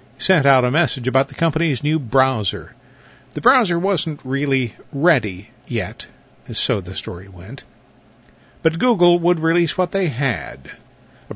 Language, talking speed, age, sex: English, 150 wpm, 50-69, male